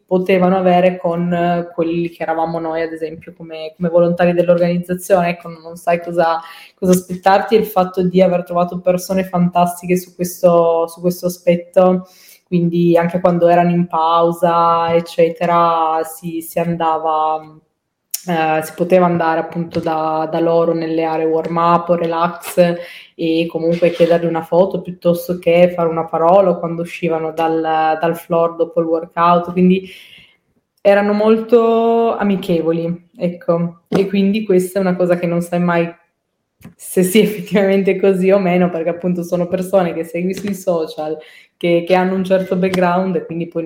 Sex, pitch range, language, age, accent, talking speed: female, 165-180 Hz, Italian, 20-39, native, 155 wpm